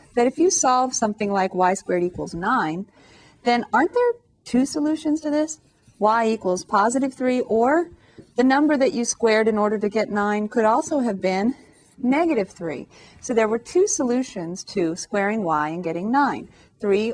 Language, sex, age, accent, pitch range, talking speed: English, female, 40-59, American, 175-235 Hz, 175 wpm